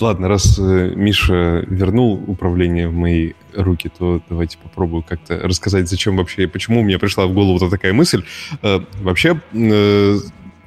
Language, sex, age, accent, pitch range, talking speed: Russian, male, 20-39, native, 90-110 Hz, 165 wpm